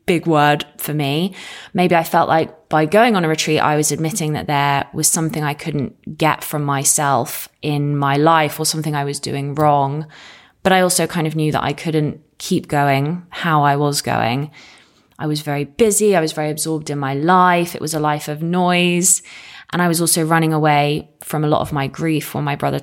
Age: 20-39